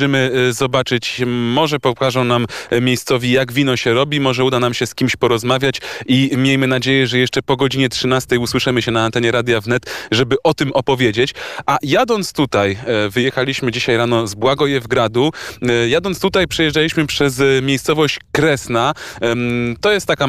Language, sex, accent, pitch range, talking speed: Polish, male, native, 125-155 Hz, 155 wpm